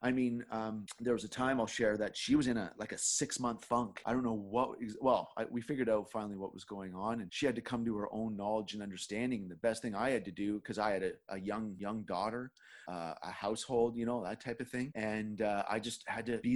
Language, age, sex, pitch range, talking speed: English, 30-49, male, 110-130 Hz, 270 wpm